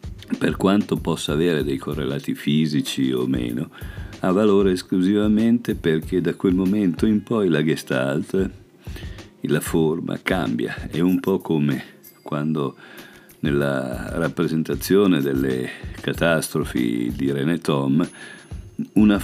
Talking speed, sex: 110 wpm, male